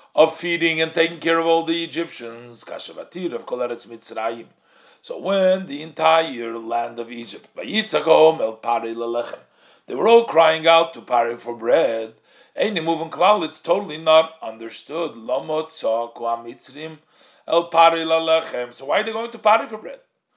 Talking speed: 120 wpm